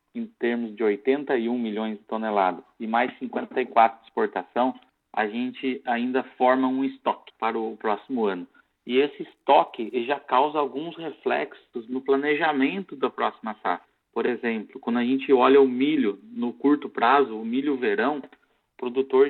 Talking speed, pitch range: 155 wpm, 115-140 Hz